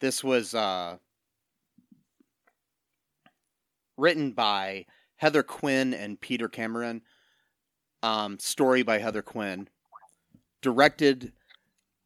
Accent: American